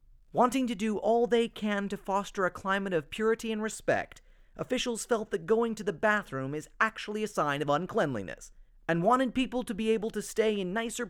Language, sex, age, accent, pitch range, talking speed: English, male, 30-49, American, 170-225 Hz, 200 wpm